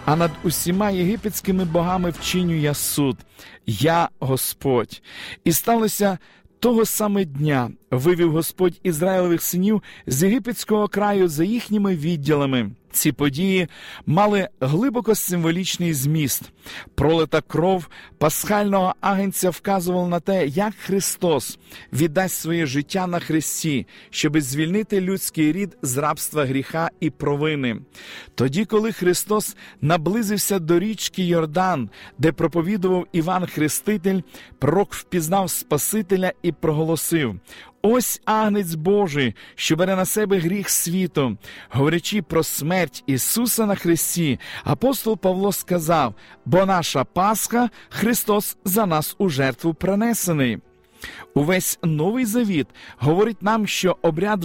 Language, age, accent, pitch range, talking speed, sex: Ukrainian, 50-69, native, 155-200 Hz, 115 wpm, male